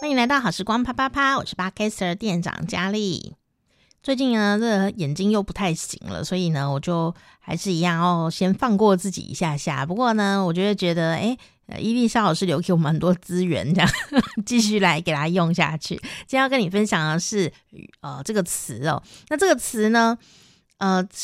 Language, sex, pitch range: Chinese, female, 170-225 Hz